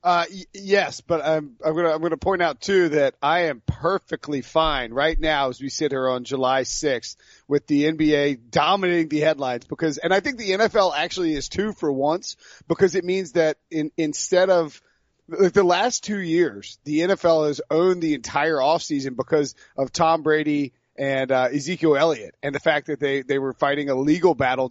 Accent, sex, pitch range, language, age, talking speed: American, male, 140-170 Hz, English, 30-49, 195 wpm